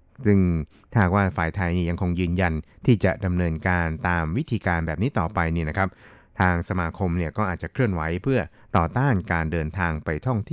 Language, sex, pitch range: Thai, male, 85-105 Hz